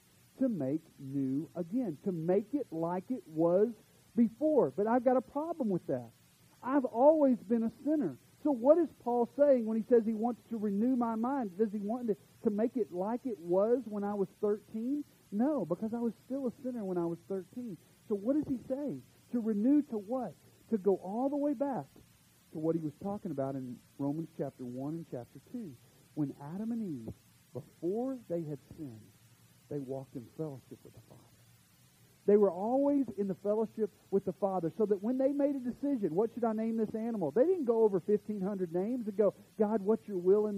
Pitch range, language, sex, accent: 170-245 Hz, English, male, American